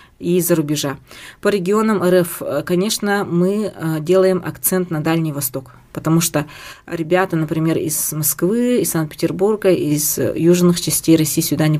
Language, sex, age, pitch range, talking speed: Russian, female, 20-39, 150-185 Hz, 135 wpm